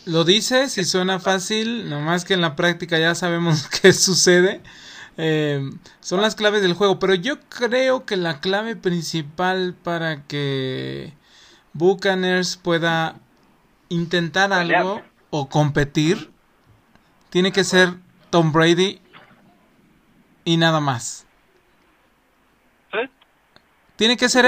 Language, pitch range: Spanish, 160-195 Hz